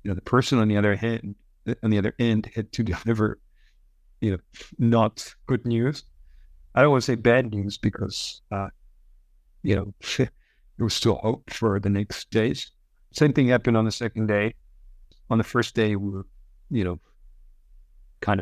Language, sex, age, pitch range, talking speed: English, male, 50-69, 95-110 Hz, 180 wpm